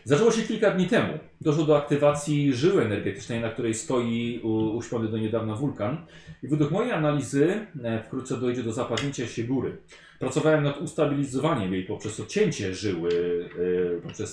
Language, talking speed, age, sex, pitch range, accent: Polish, 145 wpm, 30-49, male, 120-160 Hz, native